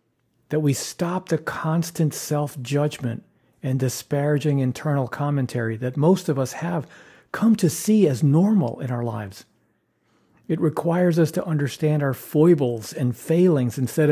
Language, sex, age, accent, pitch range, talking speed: English, male, 50-69, American, 125-160 Hz, 140 wpm